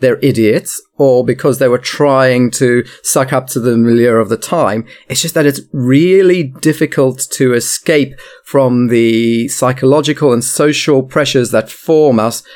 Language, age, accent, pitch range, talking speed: English, 40-59, British, 115-140 Hz, 160 wpm